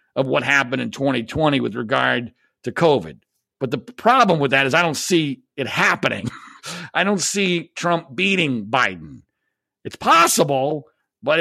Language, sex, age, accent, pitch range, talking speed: English, male, 50-69, American, 140-185 Hz, 155 wpm